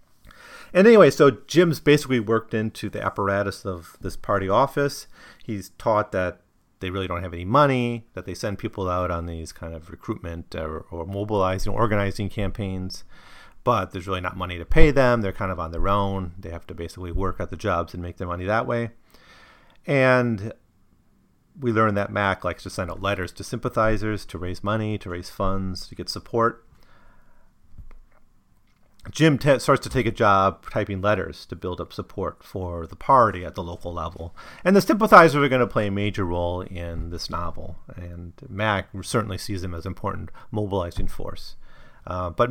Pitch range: 90-115 Hz